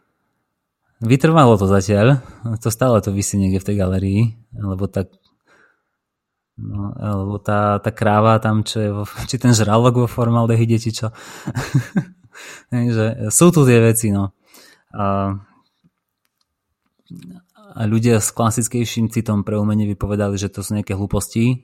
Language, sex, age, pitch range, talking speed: Slovak, male, 20-39, 100-120 Hz, 135 wpm